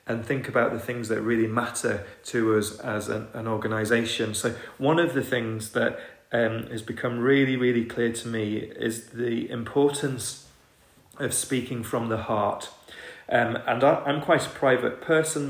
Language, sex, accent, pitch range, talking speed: English, male, British, 110-125 Hz, 170 wpm